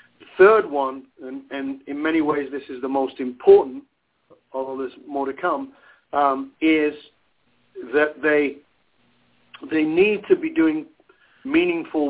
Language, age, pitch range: English, 50-69, 140-190 Hz